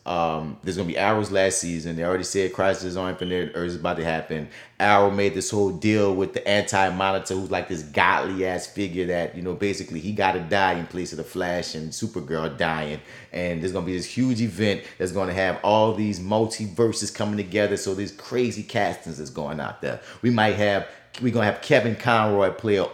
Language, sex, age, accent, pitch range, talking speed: English, male, 30-49, American, 90-110 Hz, 215 wpm